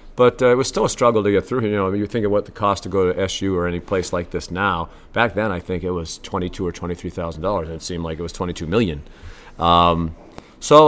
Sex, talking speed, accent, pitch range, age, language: male, 260 wpm, American, 85-105 Hz, 40-59, English